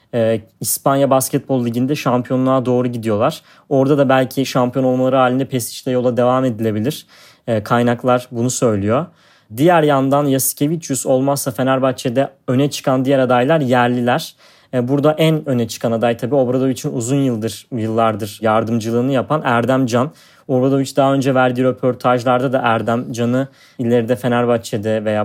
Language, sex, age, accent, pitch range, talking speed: Turkish, male, 30-49, native, 120-135 Hz, 135 wpm